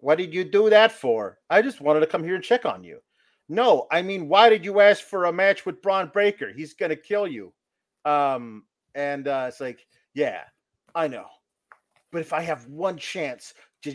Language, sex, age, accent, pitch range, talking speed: English, male, 40-59, American, 140-200 Hz, 210 wpm